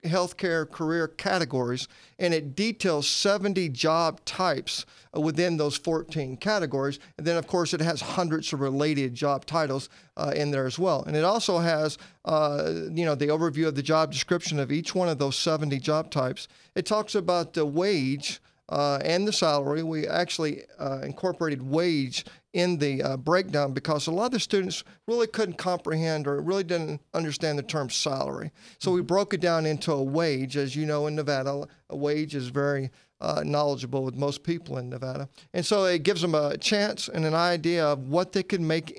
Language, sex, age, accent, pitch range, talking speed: English, male, 40-59, American, 145-175 Hz, 190 wpm